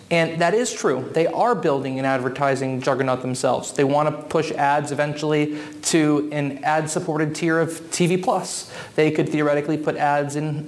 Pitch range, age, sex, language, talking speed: 135-150 Hz, 20-39, male, English, 165 wpm